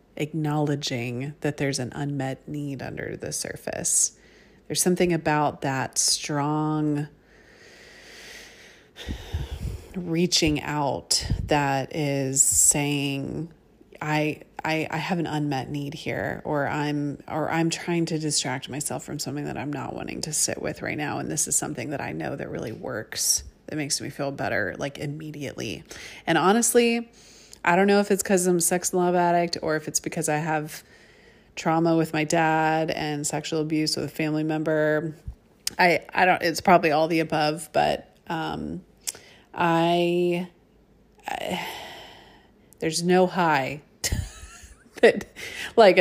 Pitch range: 145-165 Hz